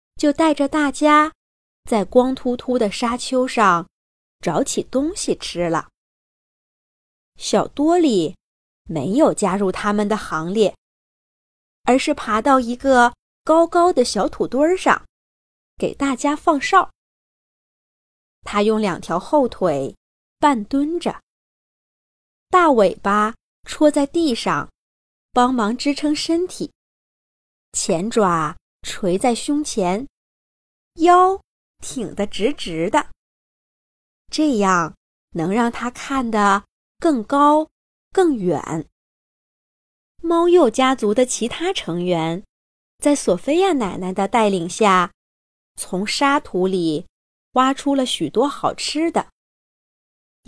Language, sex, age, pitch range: Chinese, female, 20-39, 200-300 Hz